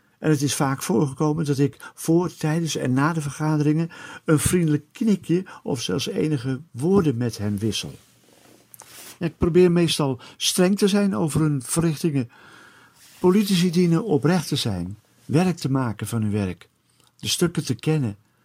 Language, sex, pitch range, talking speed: Dutch, male, 120-160 Hz, 155 wpm